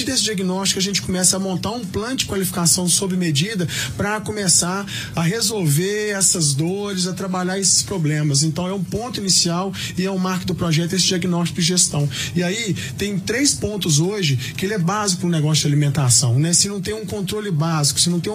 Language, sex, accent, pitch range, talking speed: Portuguese, male, Brazilian, 155-190 Hz, 205 wpm